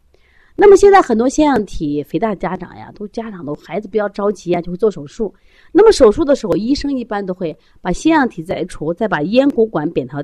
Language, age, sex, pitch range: Chinese, 30-49, female, 155-235 Hz